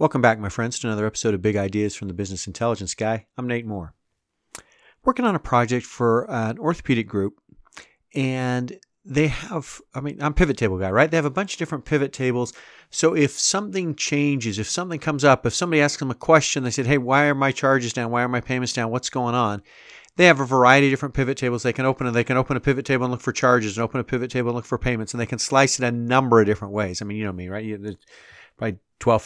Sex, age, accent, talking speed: male, 40-59, American, 255 wpm